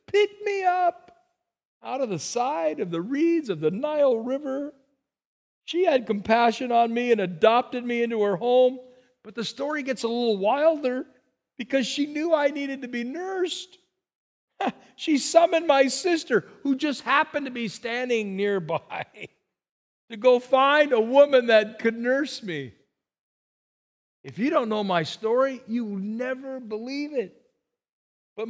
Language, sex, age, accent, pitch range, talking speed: English, male, 50-69, American, 220-290 Hz, 150 wpm